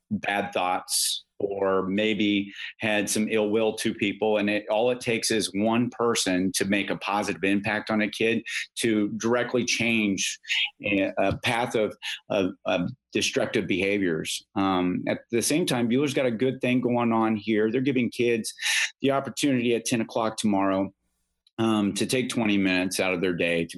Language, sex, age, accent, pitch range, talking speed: English, male, 30-49, American, 95-115 Hz, 170 wpm